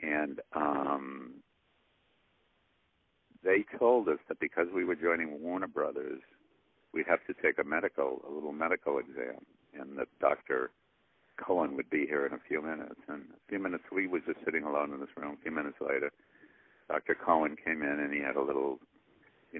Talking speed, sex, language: 180 wpm, male, English